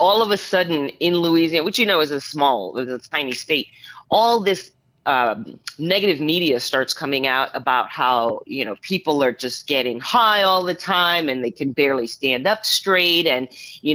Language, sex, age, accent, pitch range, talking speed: English, female, 30-49, American, 140-180 Hz, 195 wpm